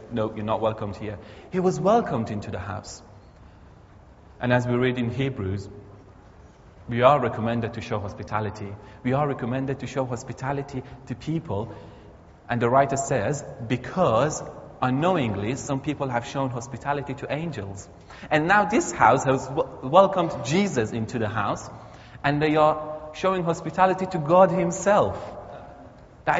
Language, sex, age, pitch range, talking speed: English, male, 30-49, 110-150 Hz, 145 wpm